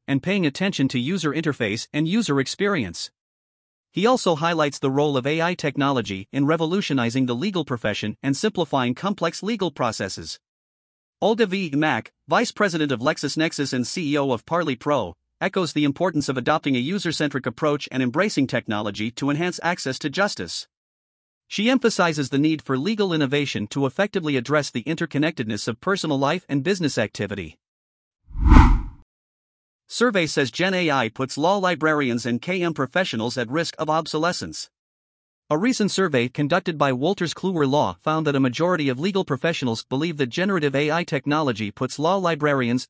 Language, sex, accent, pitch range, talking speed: English, male, American, 125-170 Hz, 155 wpm